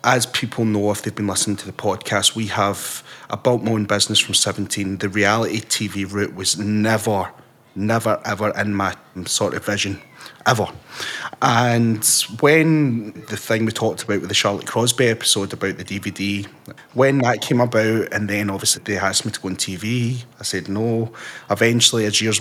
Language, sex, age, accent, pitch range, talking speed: English, male, 30-49, British, 105-130 Hz, 180 wpm